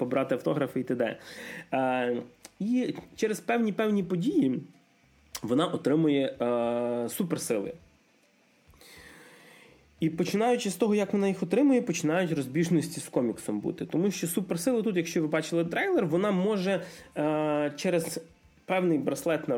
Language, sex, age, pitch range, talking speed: Ukrainian, male, 20-39, 140-195 Hz, 125 wpm